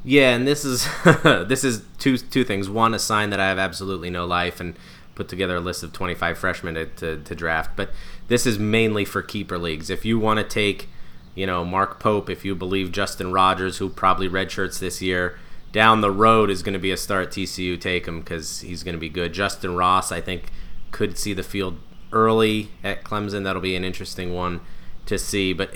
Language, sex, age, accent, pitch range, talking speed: English, male, 20-39, American, 90-110 Hz, 225 wpm